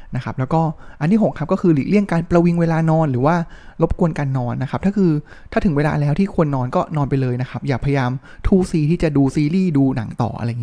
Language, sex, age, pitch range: Thai, male, 20-39, 130-170 Hz